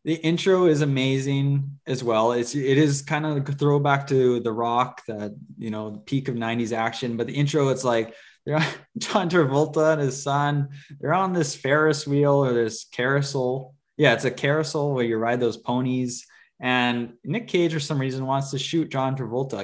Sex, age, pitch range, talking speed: male, 20-39, 120-150 Hz, 175 wpm